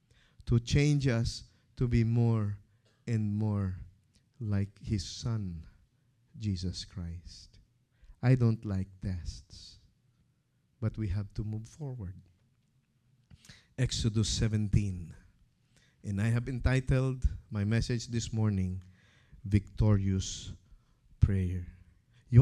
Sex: male